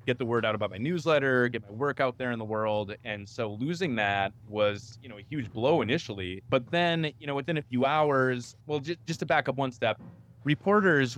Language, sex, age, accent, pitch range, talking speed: English, male, 20-39, American, 105-130 Hz, 225 wpm